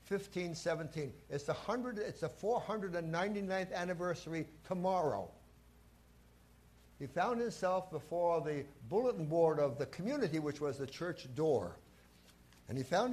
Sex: male